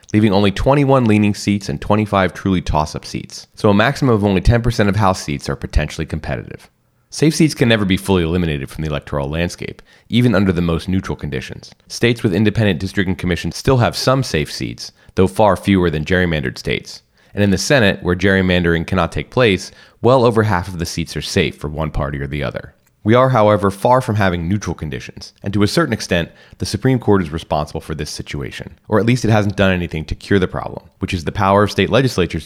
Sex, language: male, English